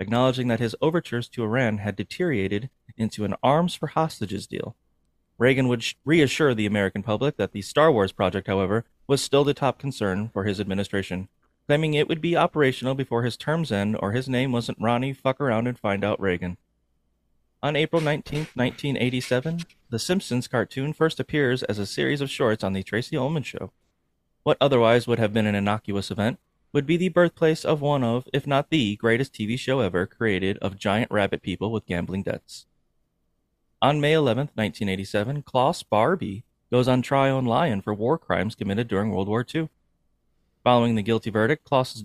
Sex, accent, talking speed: male, American, 180 wpm